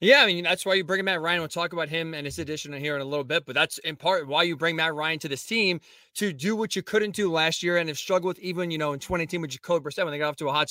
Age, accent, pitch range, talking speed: 20-39, American, 160-190 Hz, 320 wpm